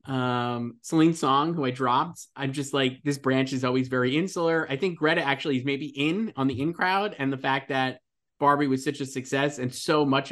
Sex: male